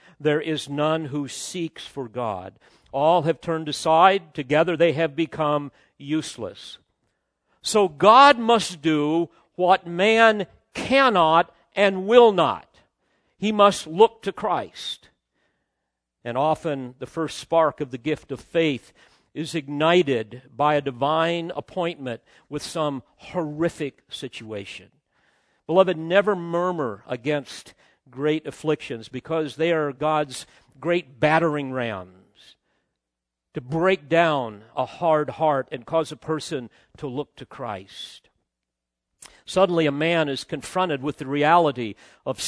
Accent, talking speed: American, 125 wpm